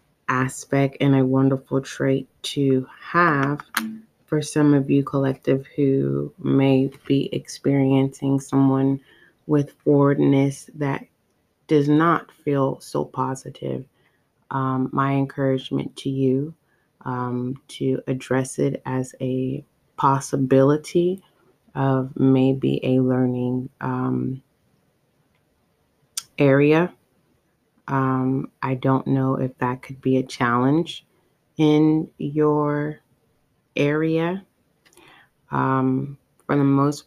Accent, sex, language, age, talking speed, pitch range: American, female, English, 30-49, 95 wpm, 130-145 Hz